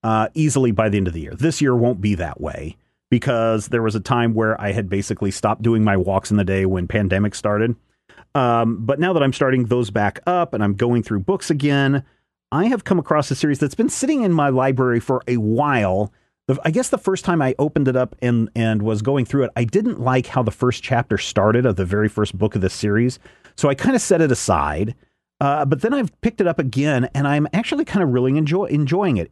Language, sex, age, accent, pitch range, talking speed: English, male, 40-59, American, 110-150 Hz, 240 wpm